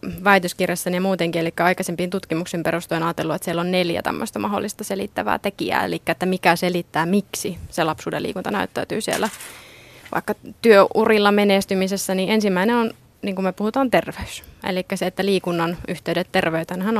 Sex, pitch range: female, 175-205 Hz